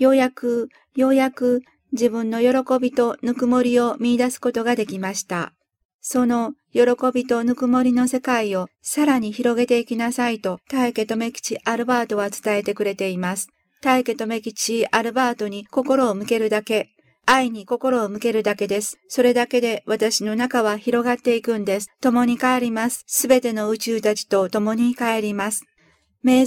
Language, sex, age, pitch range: Japanese, female, 50-69, 215-250 Hz